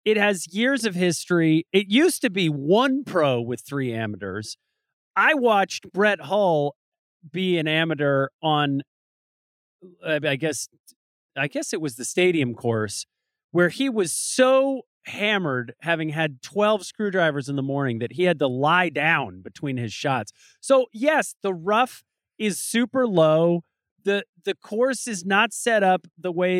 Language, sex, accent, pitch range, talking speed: English, male, American, 150-220 Hz, 155 wpm